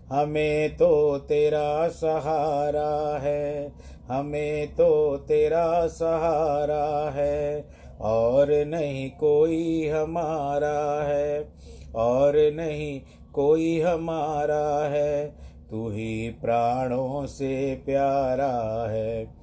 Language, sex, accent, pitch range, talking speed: Hindi, male, native, 110-145 Hz, 80 wpm